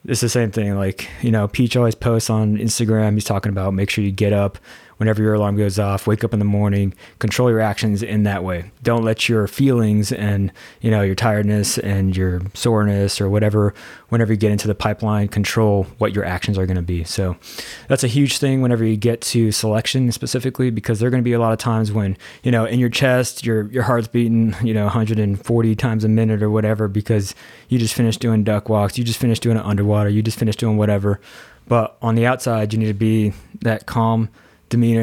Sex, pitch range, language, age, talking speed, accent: male, 105-115 Hz, English, 20-39, 225 wpm, American